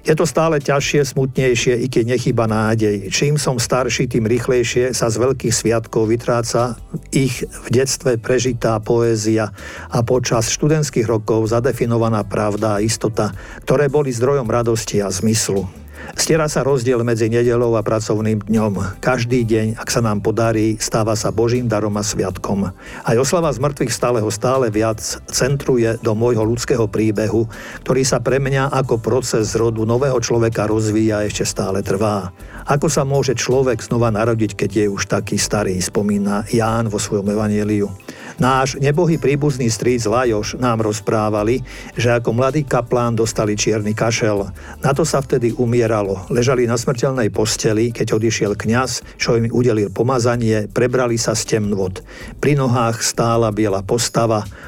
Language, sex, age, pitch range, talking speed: Slovak, male, 50-69, 110-125 Hz, 150 wpm